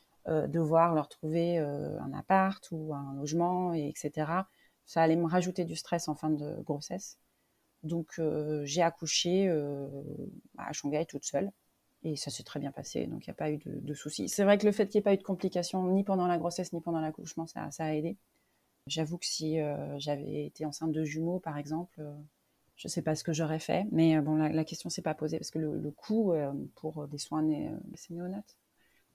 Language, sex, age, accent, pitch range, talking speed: French, female, 30-49, French, 155-180 Hz, 225 wpm